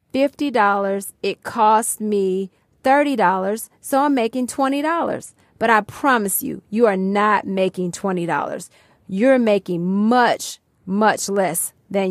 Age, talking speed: 30-49, 115 wpm